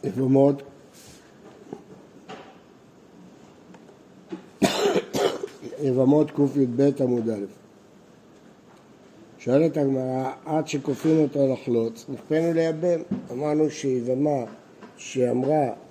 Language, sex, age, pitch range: Hebrew, male, 60-79, 135-170 Hz